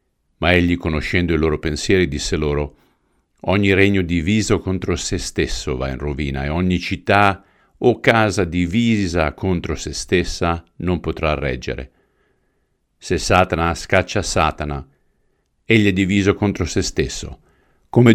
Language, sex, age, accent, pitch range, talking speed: Italian, male, 50-69, native, 75-90 Hz, 130 wpm